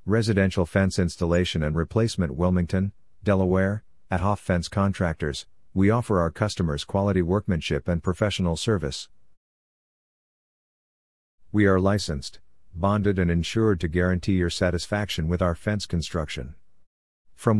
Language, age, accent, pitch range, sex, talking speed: English, 50-69, American, 85-105 Hz, male, 120 wpm